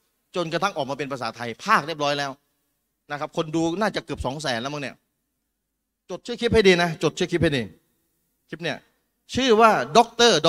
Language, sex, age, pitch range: Thai, male, 30-49, 150-230 Hz